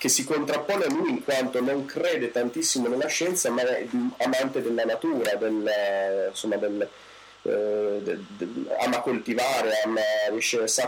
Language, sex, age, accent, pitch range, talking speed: Italian, male, 30-49, native, 110-155 Hz, 145 wpm